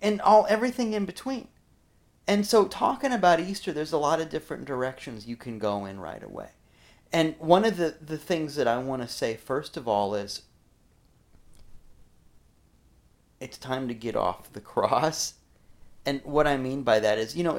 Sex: male